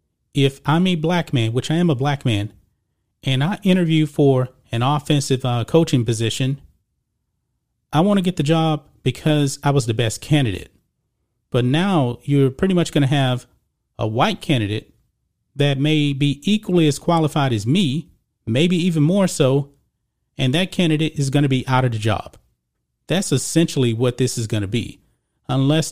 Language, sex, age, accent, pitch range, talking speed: English, male, 30-49, American, 120-160 Hz, 175 wpm